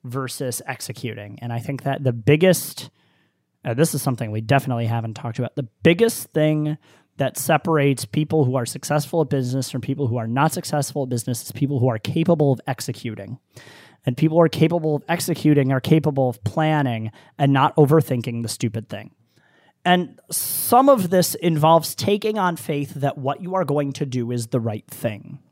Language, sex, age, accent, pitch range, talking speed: English, male, 30-49, American, 125-160 Hz, 185 wpm